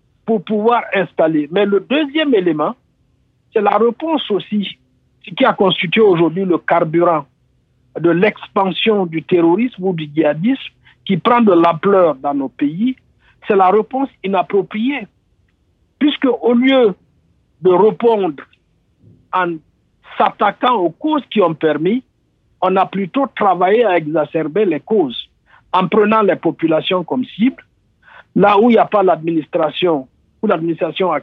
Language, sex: French, male